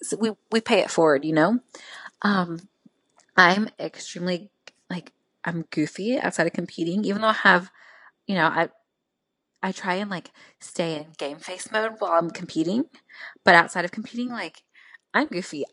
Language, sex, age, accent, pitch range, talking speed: English, female, 20-39, American, 165-205 Hz, 160 wpm